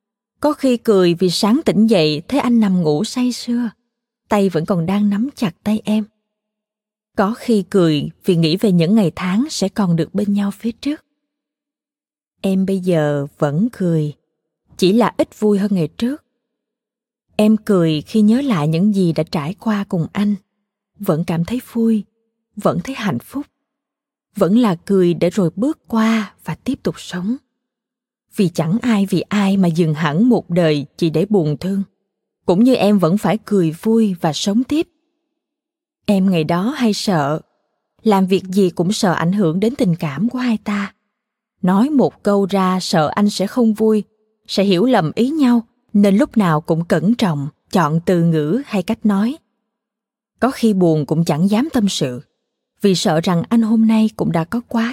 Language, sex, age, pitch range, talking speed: Vietnamese, female, 20-39, 185-235 Hz, 180 wpm